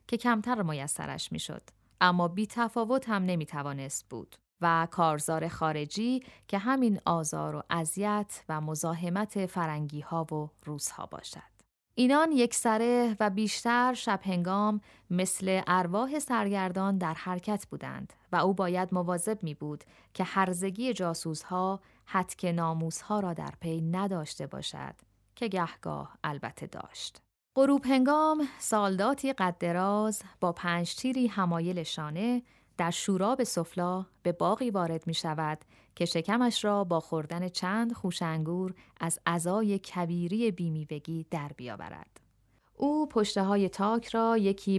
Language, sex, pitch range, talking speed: Persian, female, 165-215 Hz, 125 wpm